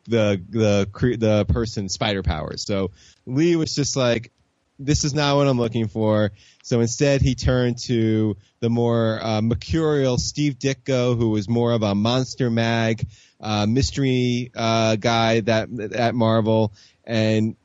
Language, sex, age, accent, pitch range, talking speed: English, male, 20-39, American, 100-120 Hz, 150 wpm